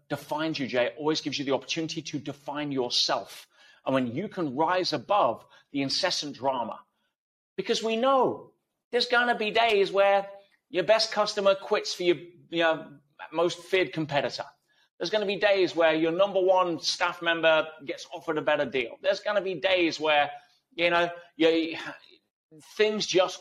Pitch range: 145-185 Hz